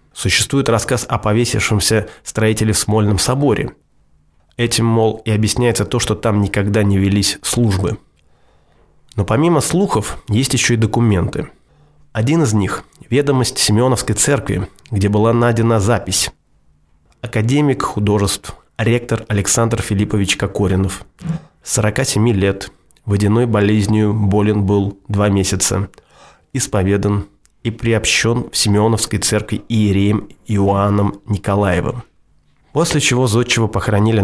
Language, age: Russian, 20-39